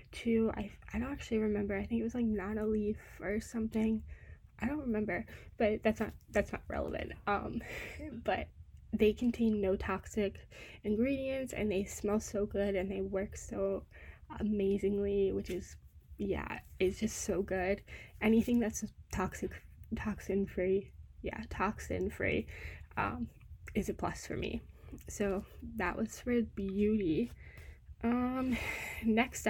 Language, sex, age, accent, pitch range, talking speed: English, female, 10-29, American, 190-225 Hz, 140 wpm